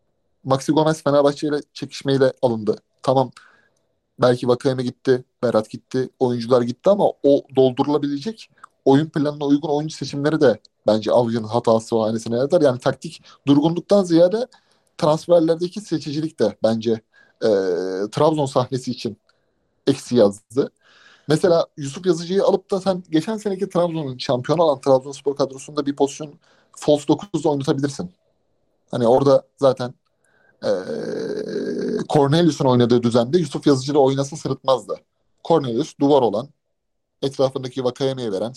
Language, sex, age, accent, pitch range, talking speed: Turkish, male, 30-49, native, 130-170 Hz, 120 wpm